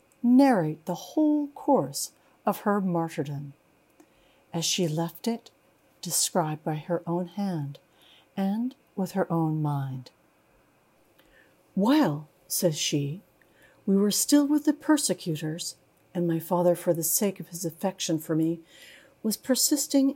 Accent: American